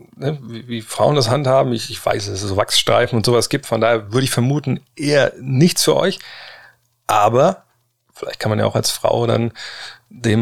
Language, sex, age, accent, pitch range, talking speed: German, male, 30-49, German, 110-135 Hz, 190 wpm